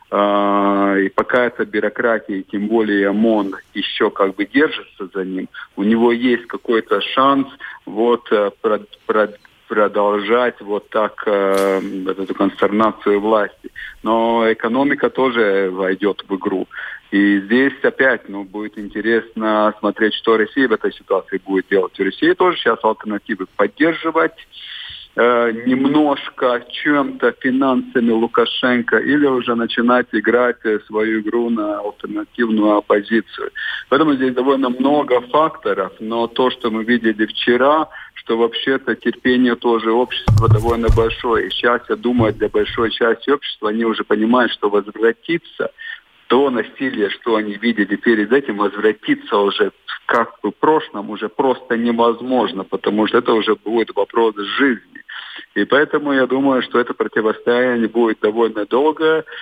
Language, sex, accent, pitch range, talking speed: Russian, male, native, 105-130 Hz, 130 wpm